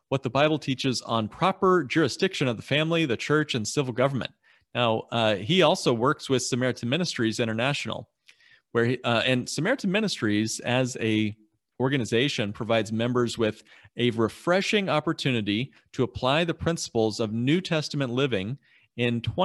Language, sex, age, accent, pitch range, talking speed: English, male, 40-59, American, 115-155 Hz, 150 wpm